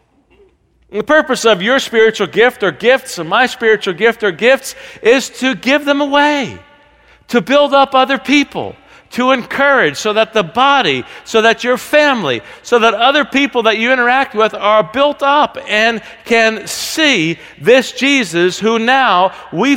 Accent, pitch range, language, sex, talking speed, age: American, 205-275 Hz, English, male, 160 wpm, 50-69